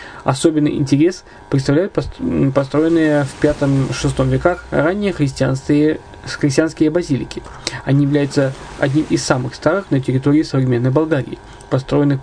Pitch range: 135-160 Hz